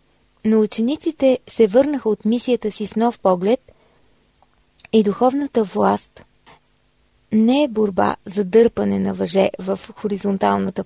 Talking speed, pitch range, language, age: 120 wpm, 195-235 Hz, Bulgarian, 20-39